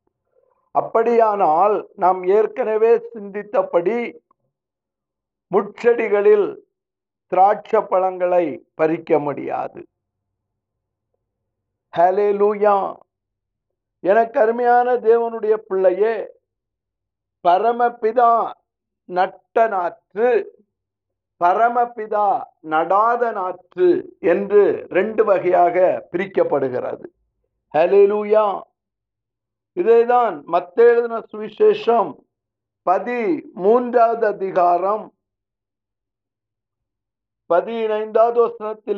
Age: 50-69